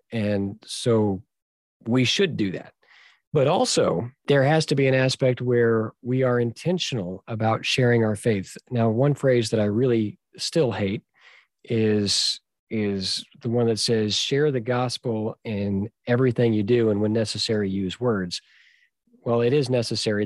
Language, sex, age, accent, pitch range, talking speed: English, male, 40-59, American, 105-130 Hz, 155 wpm